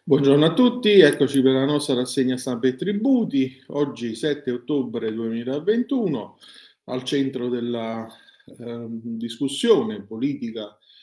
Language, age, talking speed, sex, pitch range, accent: Italian, 40-59, 115 wpm, male, 115-135 Hz, native